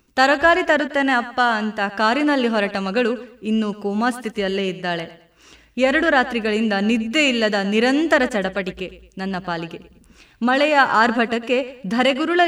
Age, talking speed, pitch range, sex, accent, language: 20-39, 105 wpm, 195-255 Hz, female, native, Kannada